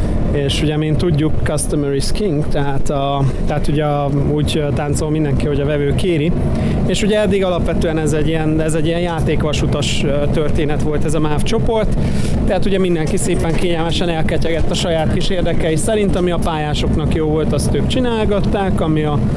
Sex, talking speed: male, 175 wpm